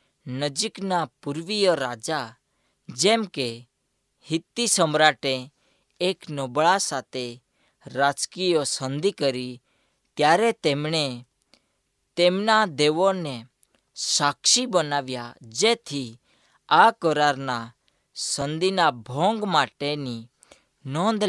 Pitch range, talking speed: 130-180 Hz, 70 wpm